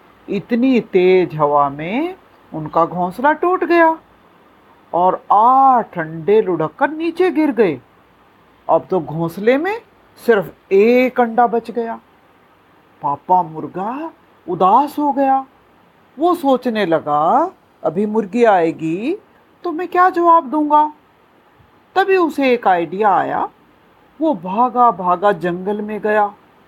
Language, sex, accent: Hindi, female, native